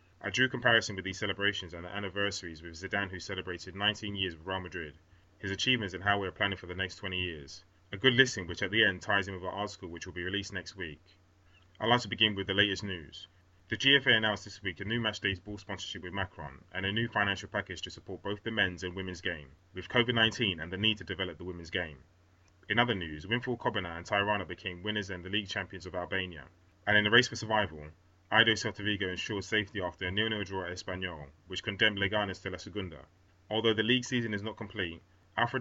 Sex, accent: male, British